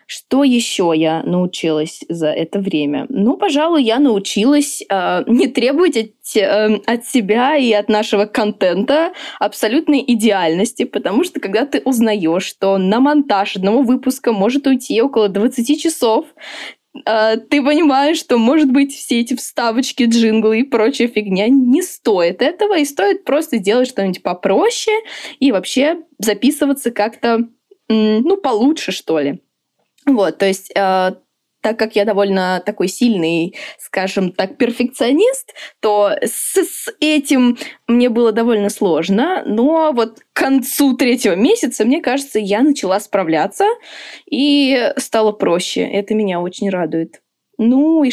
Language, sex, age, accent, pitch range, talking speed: Russian, female, 20-39, native, 210-285 Hz, 135 wpm